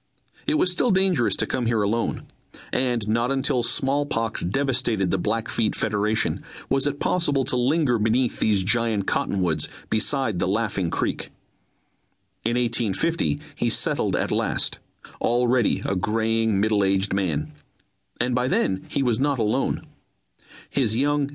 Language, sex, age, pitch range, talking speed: English, male, 40-59, 110-140 Hz, 140 wpm